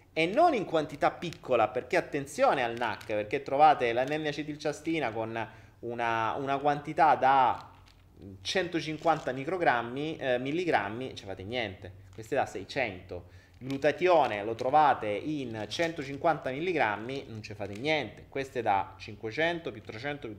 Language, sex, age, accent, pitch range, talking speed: Italian, male, 30-49, native, 105-160 Hz, 130 wpm